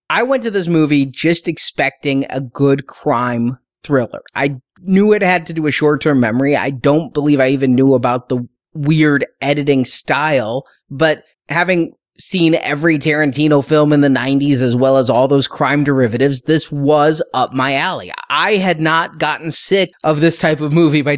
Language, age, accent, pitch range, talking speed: English, 30-49, American, 140-180 Hz, 180 wpm